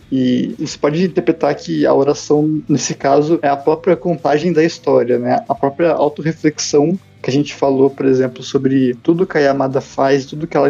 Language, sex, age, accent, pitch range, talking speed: Portuguese, male, 20-39, Brazilian, 135-155 Hz, 190 wpm